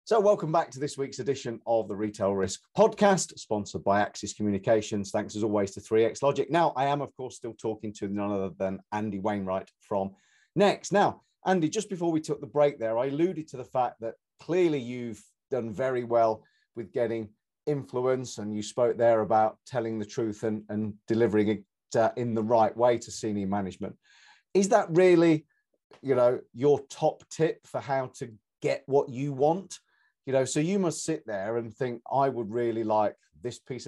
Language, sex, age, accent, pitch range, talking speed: English, male, 40-59, British, 110-140 Hz, 195 wpm